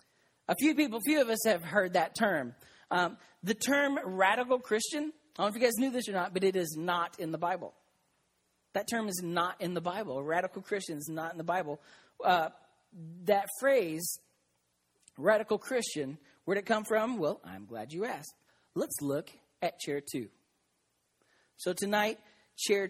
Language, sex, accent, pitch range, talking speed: English, male, American, 145-210 Hz, 185 wpm